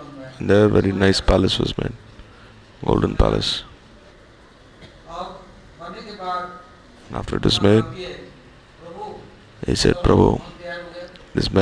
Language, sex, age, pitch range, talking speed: English, male, 30-49, 100-165 Hz, 85 wpm